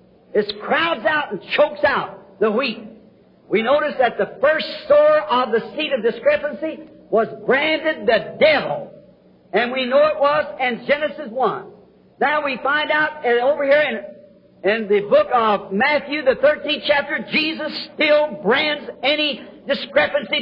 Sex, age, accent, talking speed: male, 50-69, American, 150 wpm